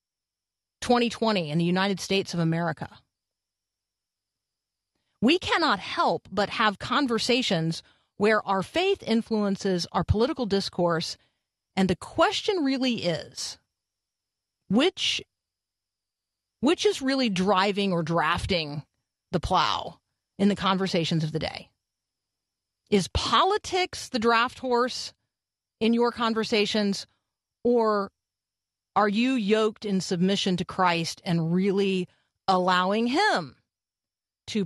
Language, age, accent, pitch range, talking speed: English, 40-59, American, 170-235 Hz, 105 wpm